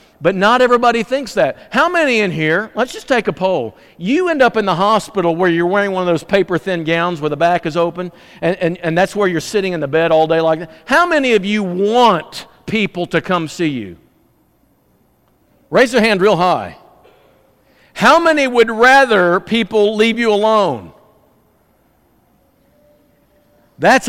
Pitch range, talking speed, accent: 175-235 Hz, 180 wpm, American